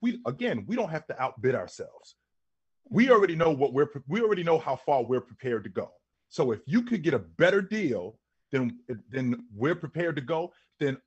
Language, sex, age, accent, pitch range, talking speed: English, male, 30-49, American, 125-175 Hz, 200 wpm